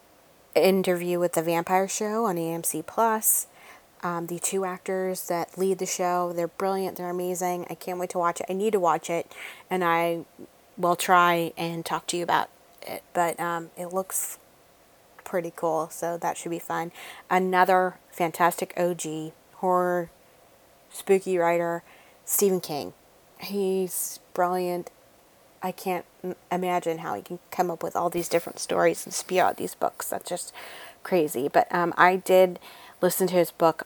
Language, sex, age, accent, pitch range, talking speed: English, female, 30-49, American, 170-190 Hz, 160 wpm